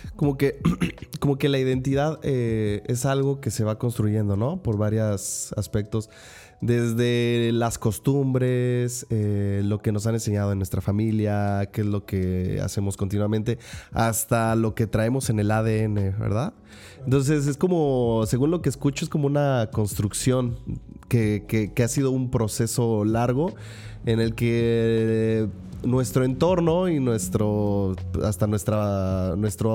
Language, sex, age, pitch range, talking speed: Spanish, male, 30-49, 105-130 Hz, 145 wpm